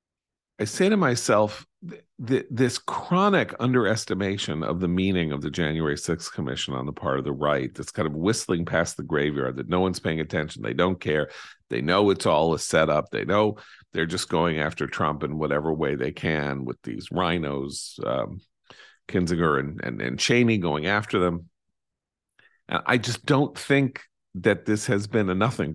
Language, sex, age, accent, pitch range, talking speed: English, male, 50-69, American, 80-115 Hz, 185 wpm